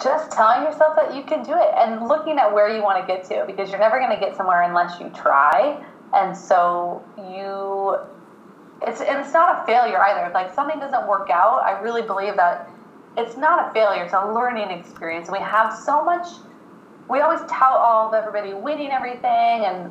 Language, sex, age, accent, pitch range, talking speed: English, female, 20-39, American, 195-280 Hz, 205 wpm